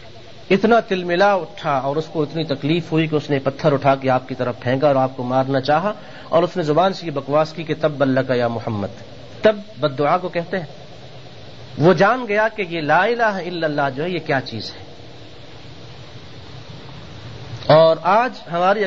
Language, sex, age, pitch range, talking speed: Urdu, male, 40-59, 130-175 Hz, 195 wpm